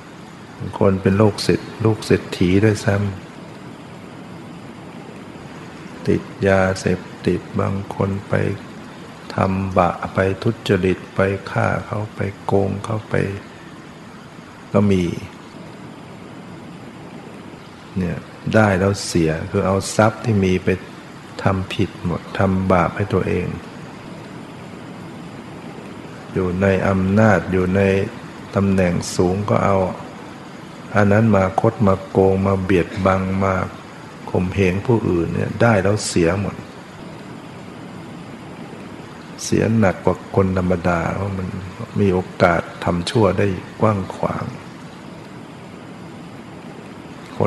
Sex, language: male, Thai